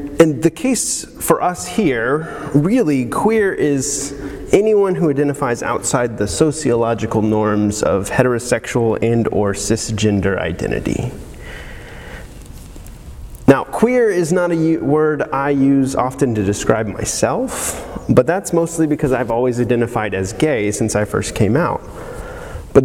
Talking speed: 130 wpm